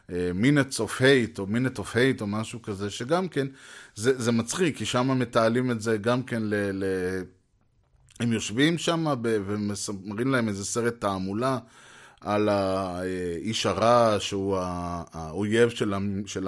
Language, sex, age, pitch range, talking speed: Hebrew, male, 20-39, 105-140 Hz, 140 wpm